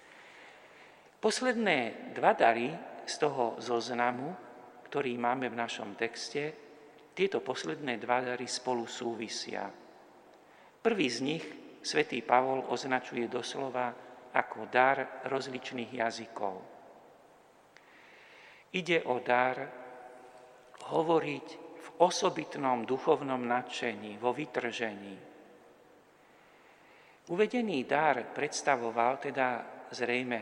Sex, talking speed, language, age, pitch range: male, 85 wpm, Slovak, 50-69, 115-130 Hz